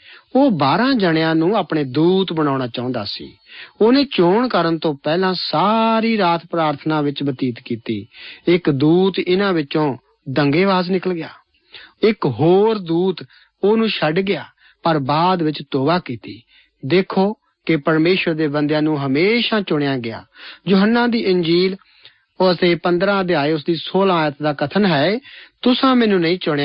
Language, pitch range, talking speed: Punjabi, 150-200 Hz, 90 wpm